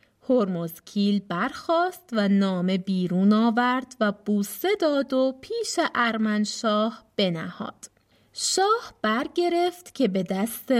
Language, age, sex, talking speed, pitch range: Persian, 30-49, female, 105 wpm, 220-310 Hz